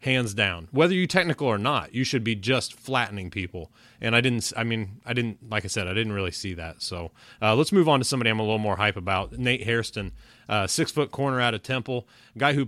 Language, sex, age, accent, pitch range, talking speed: English, male, 30-49, American, 105-125 Hz, 240 wpm